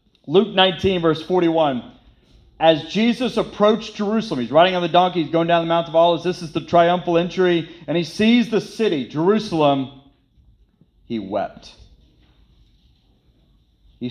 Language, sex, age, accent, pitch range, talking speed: English, male, 30-49, American, 120-170 Hz, 145 wpm